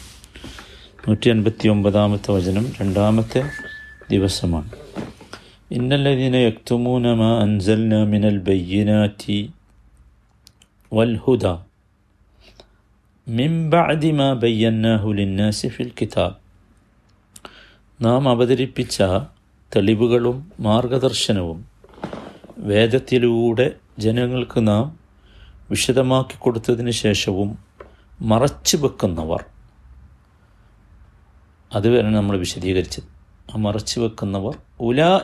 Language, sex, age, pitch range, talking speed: Malayalam, male, 50-69, 100-125 Hz, 45 wpm